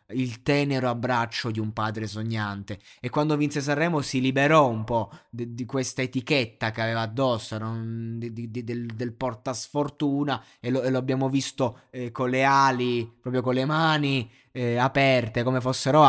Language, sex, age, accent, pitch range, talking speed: Italian, male, 20-39, native, 115-135 Hz, 155 wpm